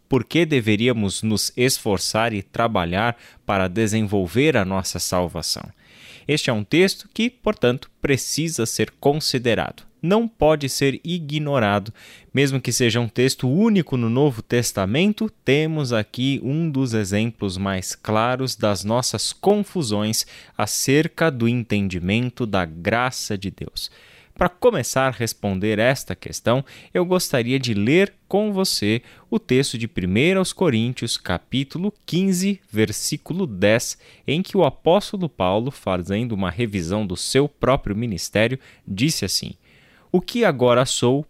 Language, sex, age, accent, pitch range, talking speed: Portuguese, male, 20-39, Brazilian, 105-155 Hz, 130 wpm